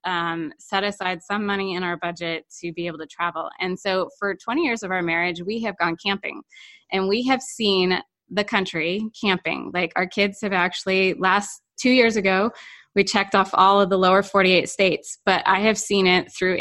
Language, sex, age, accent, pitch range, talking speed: English, female, 20-39, American, 180-220 Hz, 200 wpm